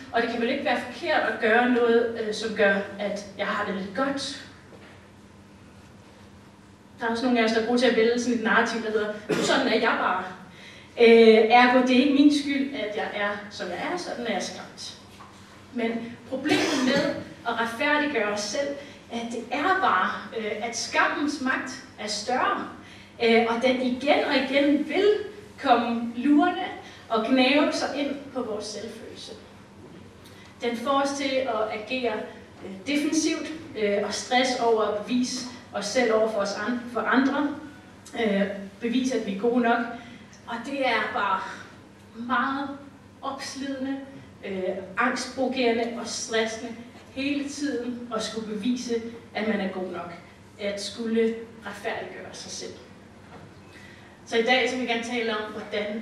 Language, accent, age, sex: Danish, native, 30-49, female